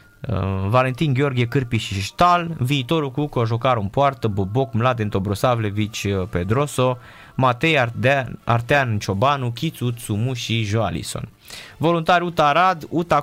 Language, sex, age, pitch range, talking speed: Romanian, male, 20-39, 110-145 Hz, 115 wpm